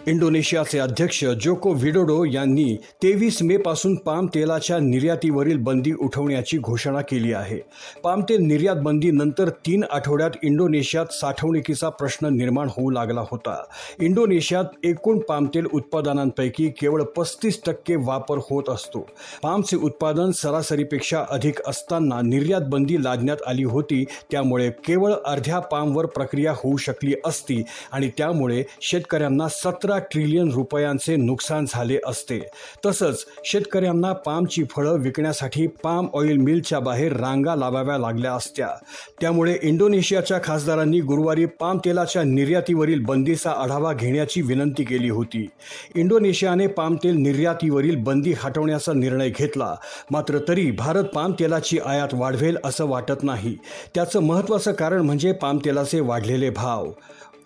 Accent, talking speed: native, 70 wpm